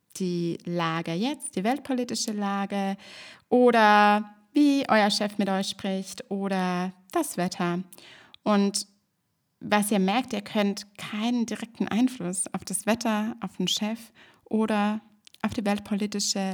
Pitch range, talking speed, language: 195-225 Hz, 125 wpm, German